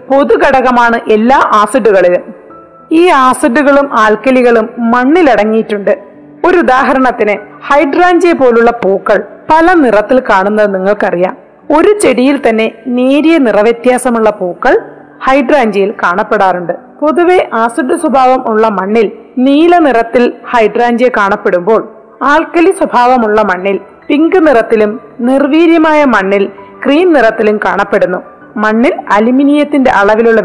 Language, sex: Malayalam, female